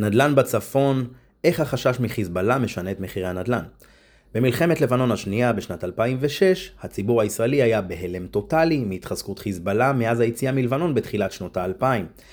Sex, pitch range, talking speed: male, 100-130 Hz, 130 wpm